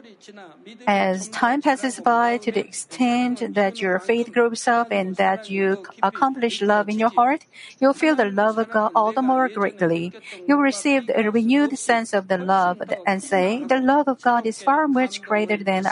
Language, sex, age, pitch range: Korean, female, 50-69, 195-250 Hz